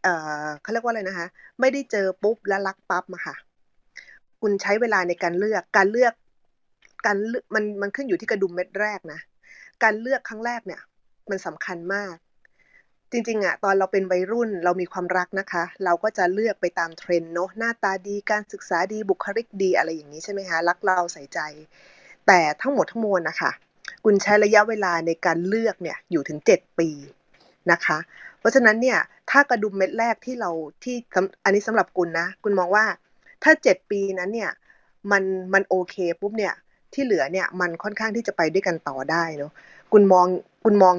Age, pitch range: 20-39, 180-220 Hz